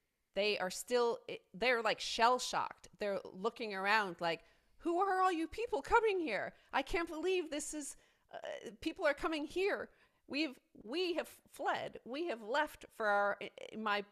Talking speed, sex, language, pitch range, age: 160 wpm, female, English, 175-225 Hz, 40-59